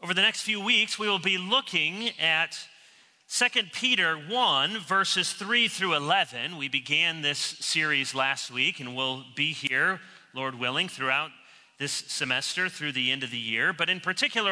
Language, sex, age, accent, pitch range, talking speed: English, male, 40-59, American, 150-215 Hz, 170 wpm